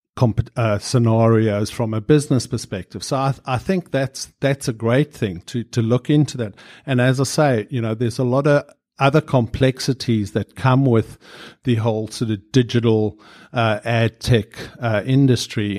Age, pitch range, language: 50-69, 110-130 Hz, English